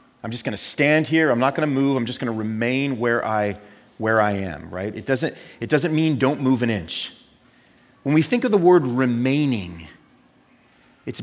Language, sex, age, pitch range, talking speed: English, male, 30-49, 110-150 Hz, 200 wpm